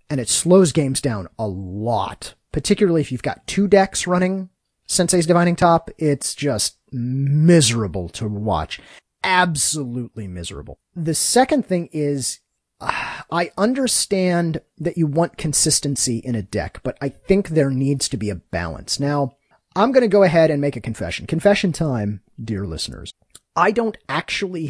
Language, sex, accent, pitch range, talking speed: English, male, American, 110-165 Hz, 155 wpm